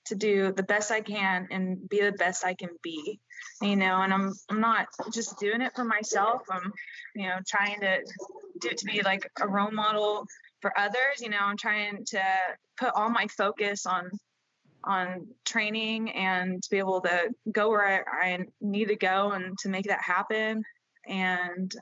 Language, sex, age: English, female, 20-39